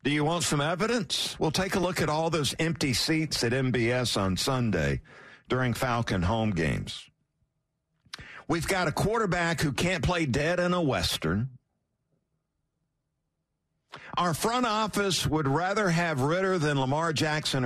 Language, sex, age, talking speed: English, male, 50-69, 145 wpm